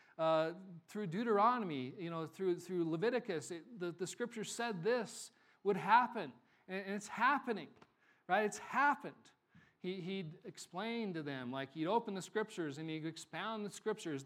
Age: 40-59